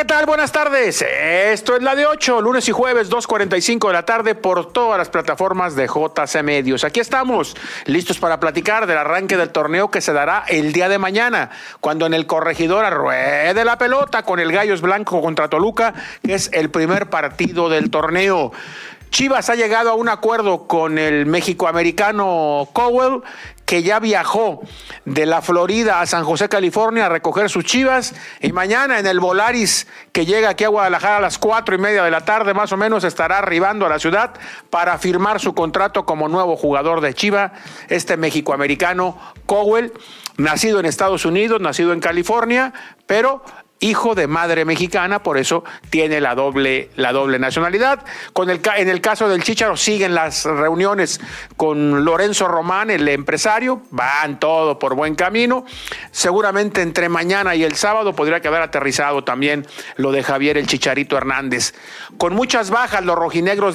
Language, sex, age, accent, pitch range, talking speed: Spanish, male, 50-69, Mexican, 160-220 Hz, 170 wpm